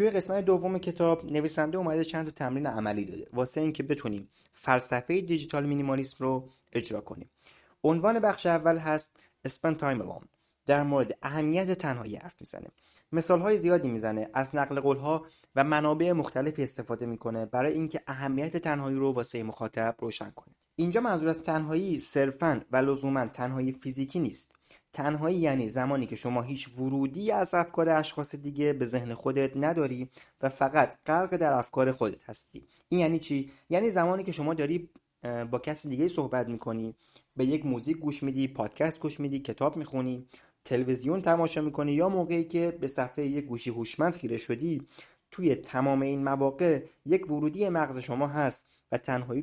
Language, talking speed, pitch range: Persian, 160 wpm, 130-160 Hz